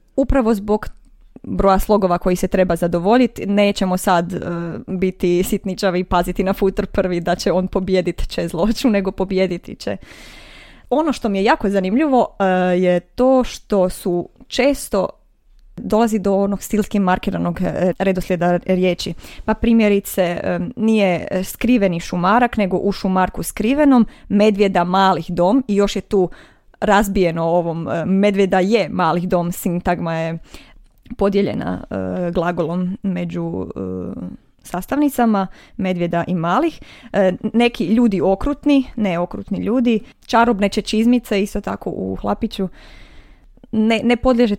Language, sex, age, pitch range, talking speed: Croatian, female, 20-39, 180-220 Hz, 125 wpm